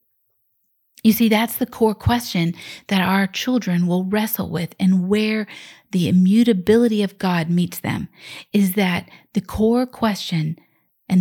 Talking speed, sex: 140 wpm, female